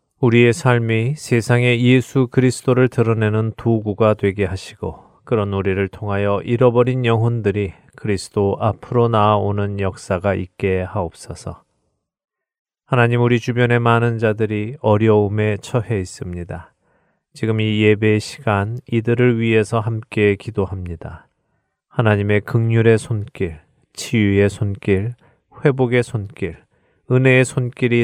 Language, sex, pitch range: Korean, male, 100-120 Hz